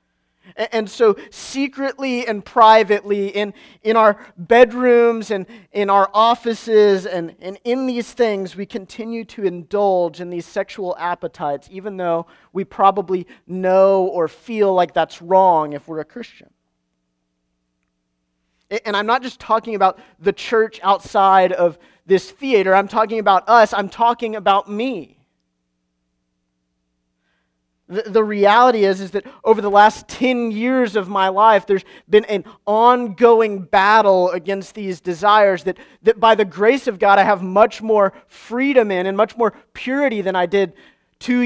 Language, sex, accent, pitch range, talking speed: English, male, American, 180-220 Hz, 150 wpm